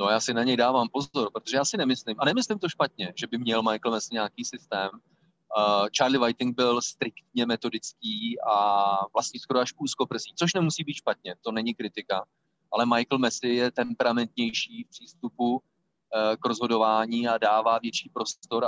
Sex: male